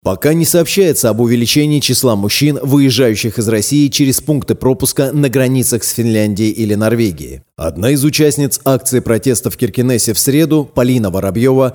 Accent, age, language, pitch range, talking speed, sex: native, 30-49, Russian, 110-135 Hz, 155 wpm, male